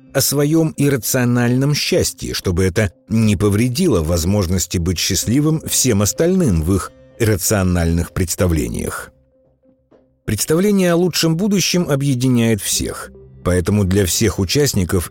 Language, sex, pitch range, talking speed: Russian, male, 95-145 Hz, 105 wpm